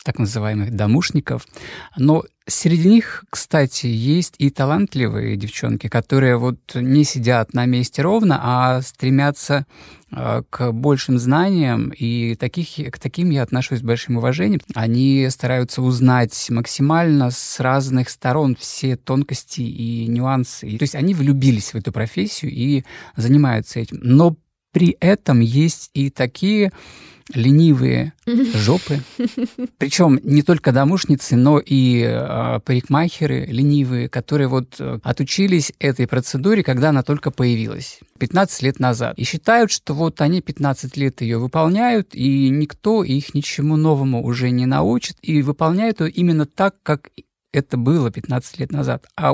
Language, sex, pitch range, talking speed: Russian, male, 125-155 Hz, 135 wpm